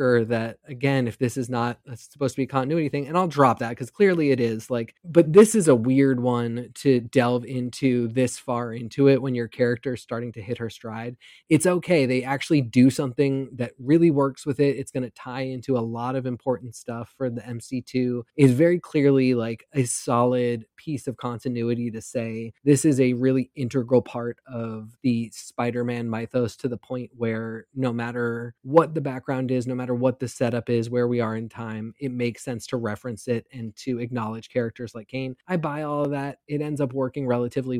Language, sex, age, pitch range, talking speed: English, male, 20-39, 120-140 Hz, 205 wpm